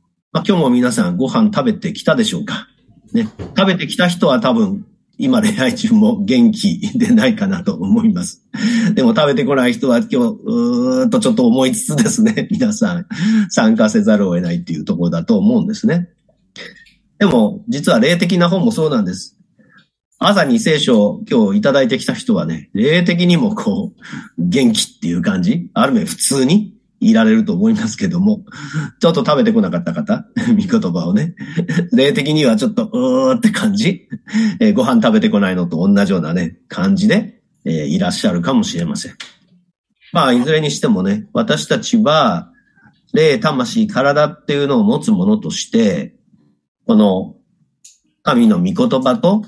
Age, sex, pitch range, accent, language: 40-59, male, 190-230 Hz, native, Japanese